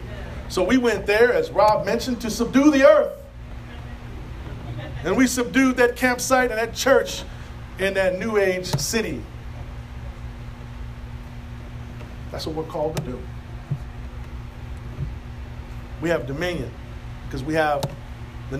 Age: 40-59